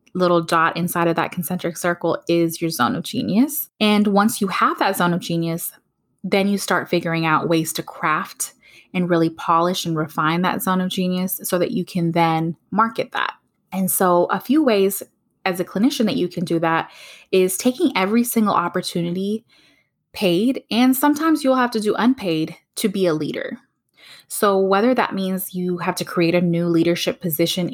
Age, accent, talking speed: 20-39, American, 185 wpm